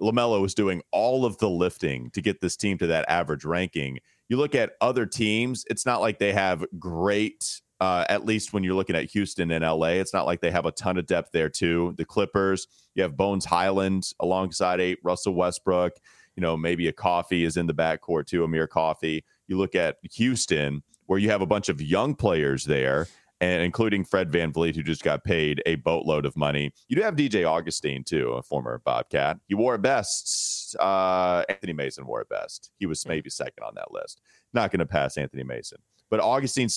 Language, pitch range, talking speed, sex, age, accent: English, 80-110 Hz, 205 wpm, male, 30-49, American